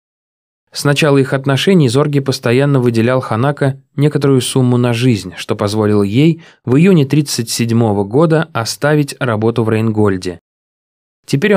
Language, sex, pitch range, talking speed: Russian, male, 105-140 Hz, 125 wpm